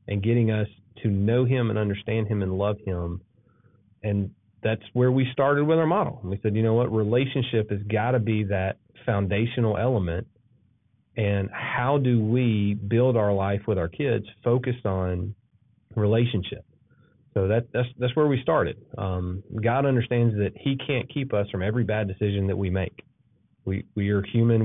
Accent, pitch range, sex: American, 100-120 Hz, male